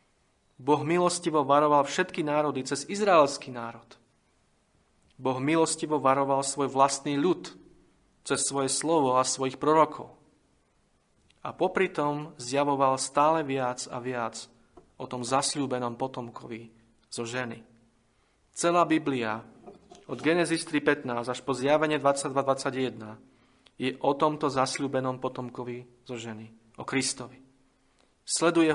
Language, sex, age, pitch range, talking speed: Slovak, male, 40-59, 130-150 Hz, 110 wpm